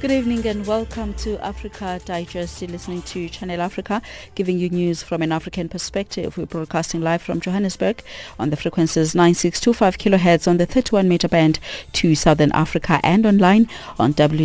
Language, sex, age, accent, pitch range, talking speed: English, female, 30-49, South African, 160-205 Hz, 160 wpm